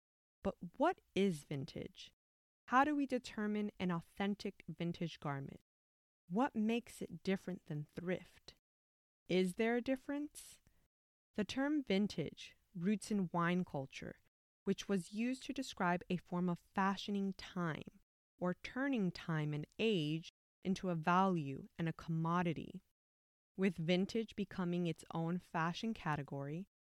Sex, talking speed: female, 125 wpm